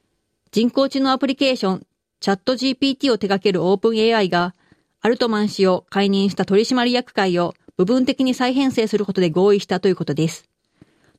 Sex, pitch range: female, 185-235 Hz